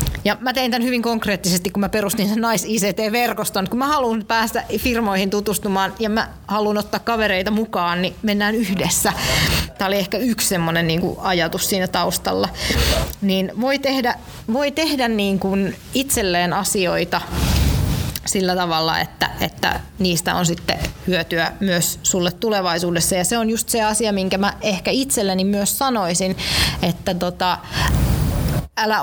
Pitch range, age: 180-220 Hz, 30-49